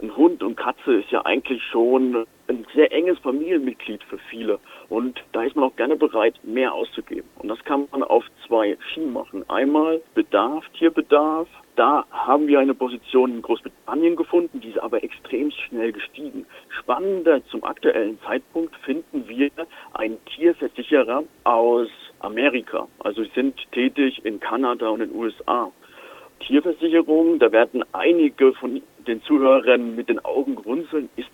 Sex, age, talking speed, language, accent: male, 50-69, 150 wpm, German, German